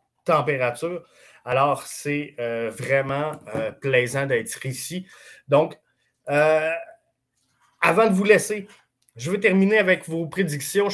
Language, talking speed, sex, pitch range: French, 110 wpm, male, 140-195 Hz